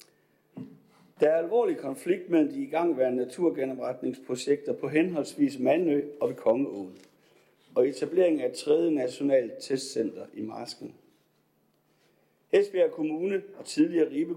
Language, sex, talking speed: Danish, male, 115 wpm